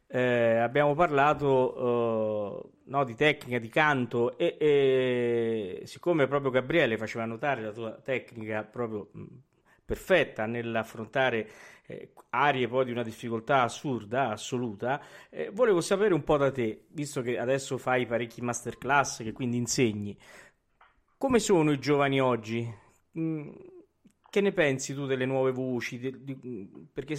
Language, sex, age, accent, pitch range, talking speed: Italian, male, 40-59, native, 115-155 Hz, 140 wpm